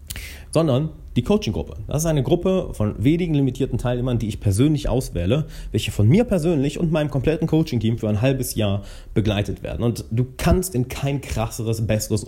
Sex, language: male, German